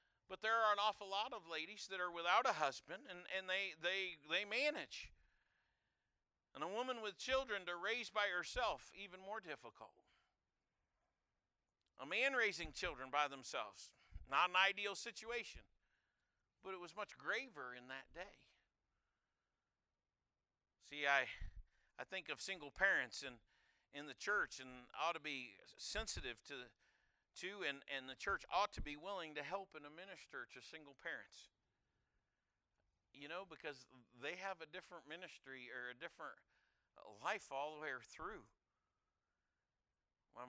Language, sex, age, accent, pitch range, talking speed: English, male, 50-69, American, 125-185 Hz, 145 wpm